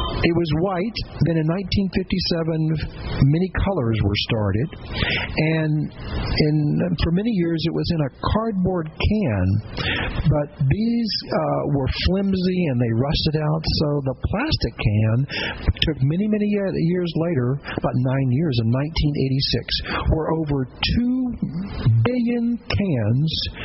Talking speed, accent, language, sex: 120 wpm, American, English, male